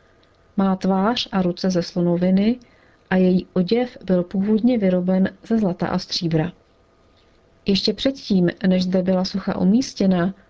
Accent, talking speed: native, 130 wpm